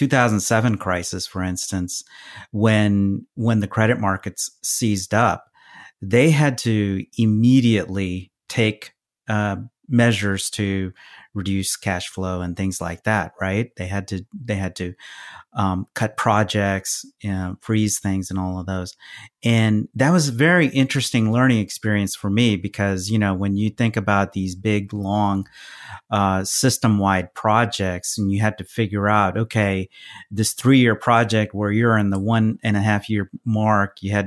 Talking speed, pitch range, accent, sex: 155 wpm, 95-115 Hz, American, male